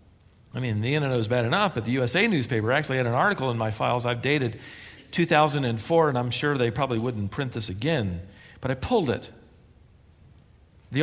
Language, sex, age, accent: English, male, 50-69, American